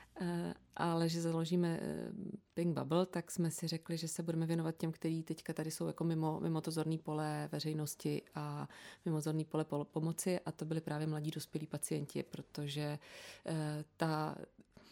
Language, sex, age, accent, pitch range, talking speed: Czech, female, 30-49, native, 155-175 Hz, 165 wpm